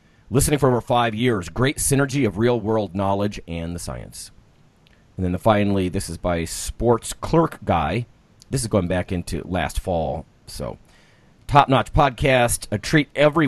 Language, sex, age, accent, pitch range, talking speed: English, male, 40-59, American, 95-130 Hz, 170 wpm